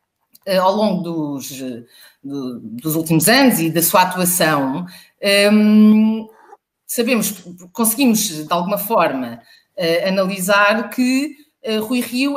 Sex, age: female, 30-49